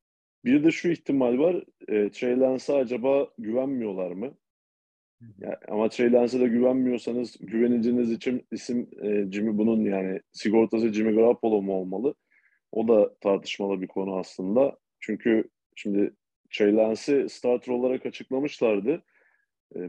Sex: male